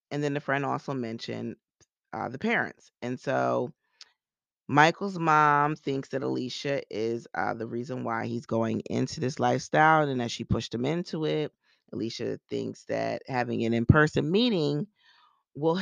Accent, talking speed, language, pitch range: American, 155 wpm, English, 115-150 Hz